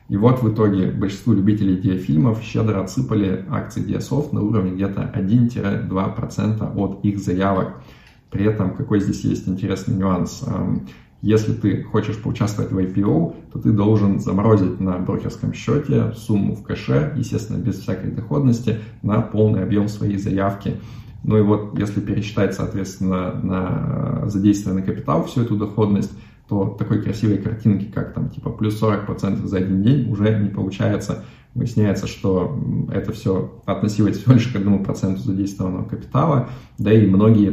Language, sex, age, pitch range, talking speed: Russian, male, 20-39, 95-115 Hz, 145 wpm